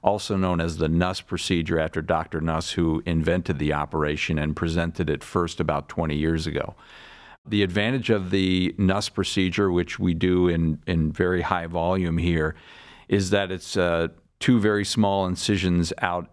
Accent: American